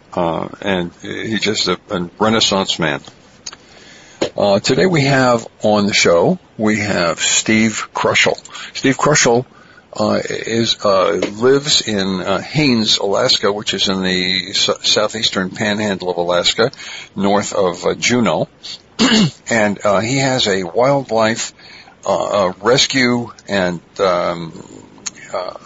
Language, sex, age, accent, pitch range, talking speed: English, male, 60-79, American, 100-120 Hz, 115 wpm